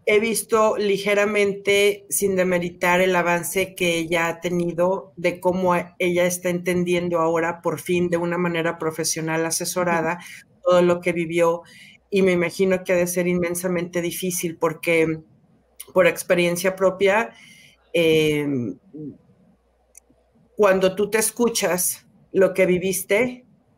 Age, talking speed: 50-69, 125 wpm